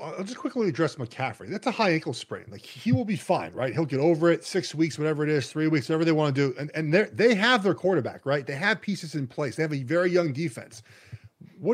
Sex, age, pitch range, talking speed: male, 30-49, 145-185 Hz, 260 wpm